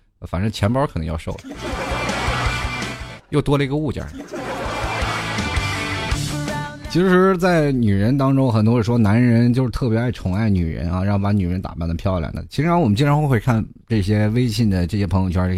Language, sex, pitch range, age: Chinese, male, 90-130 Hz, 20-39